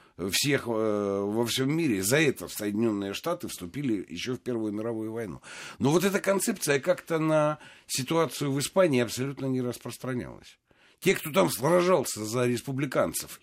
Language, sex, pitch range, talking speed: Russian, male, 115-165 Hz, 150 wpm